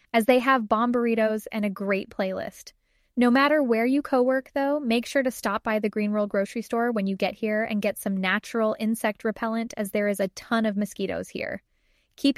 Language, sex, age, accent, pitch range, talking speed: English, female, 10-29, American, 200-250 Hz, 215 wpm